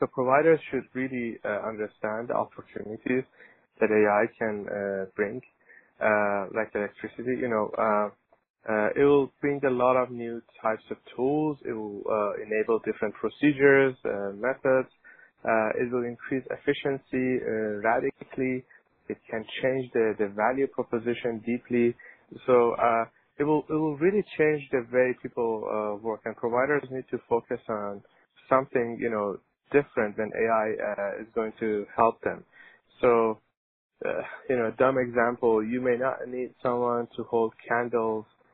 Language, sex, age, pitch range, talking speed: English, male, 20-39, 110-130 Hz, 155 wpm